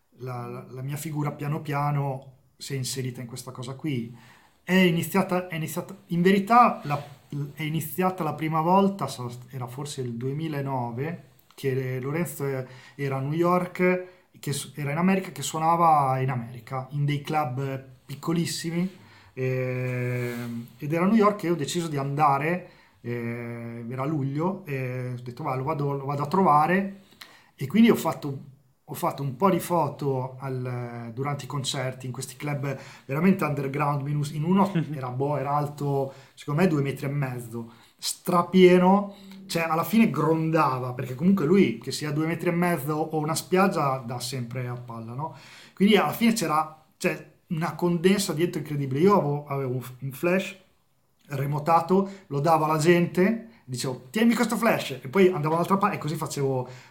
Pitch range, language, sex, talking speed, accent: 130-175 Hz, Italian, male, 165 wpm, native